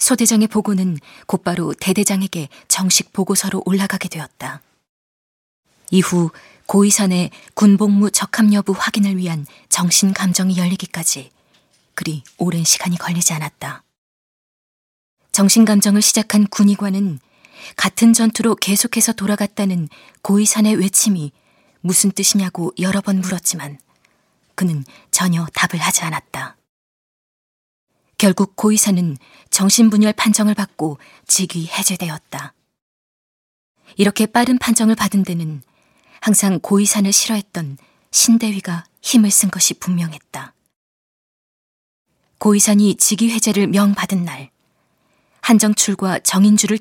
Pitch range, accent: 175-210 Hz, native